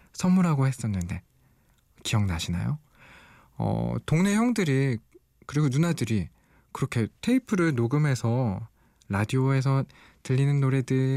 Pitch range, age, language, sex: 110-150 Hz, 20-39, Korean, male